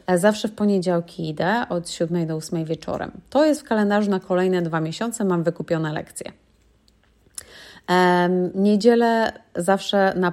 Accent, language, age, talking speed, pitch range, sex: native, Polish, 30-49, 140 wpm, 170-195 Hz, female